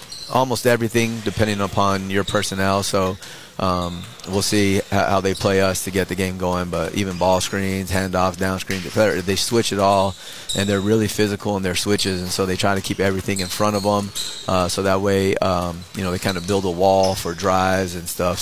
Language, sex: English, male